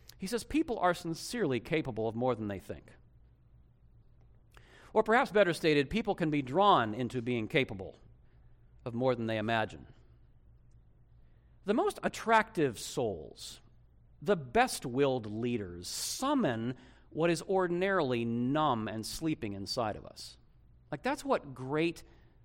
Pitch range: 120-185 Hz